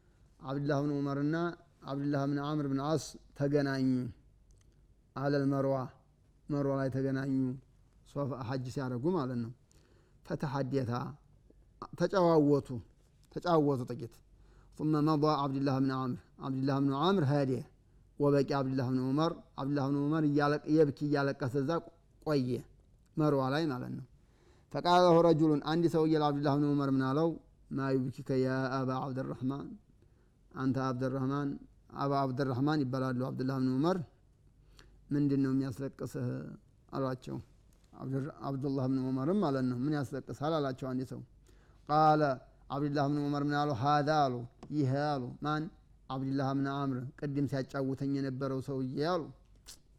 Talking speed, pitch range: 125 wpm, 130-145 Hz